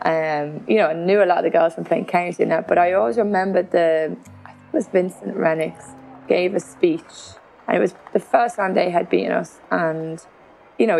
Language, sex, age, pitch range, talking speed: English, female, 20-39, 165-190 Hz, 230 wpm